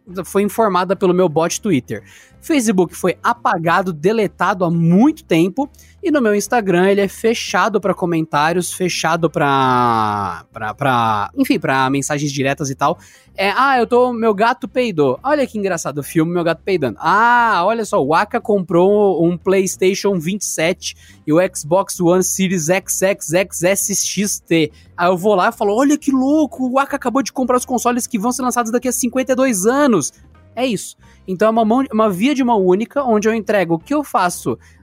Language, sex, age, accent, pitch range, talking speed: Portuguese, male, 20-39, Brazilian, 165-235 Hz, 175 wpm